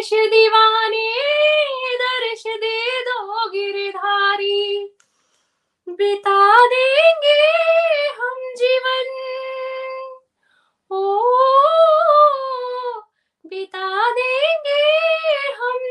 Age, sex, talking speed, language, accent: 20-39, female, 55 wpm, Hindi, native